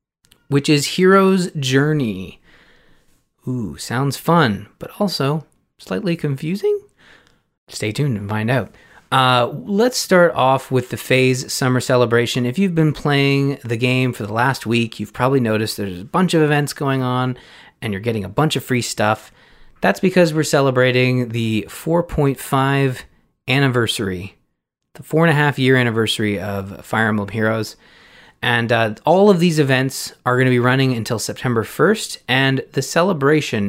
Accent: American